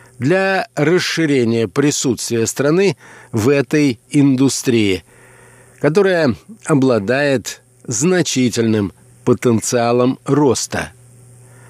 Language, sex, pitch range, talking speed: Russian, male, 120-150 Hz, 60 wpm